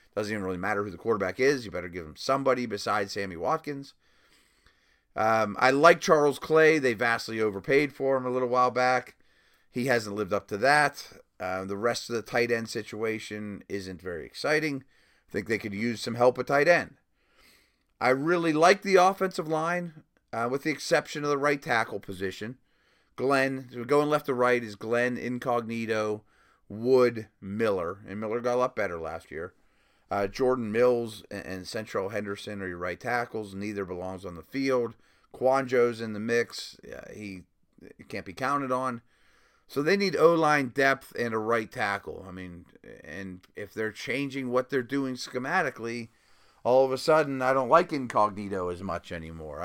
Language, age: English, 30-49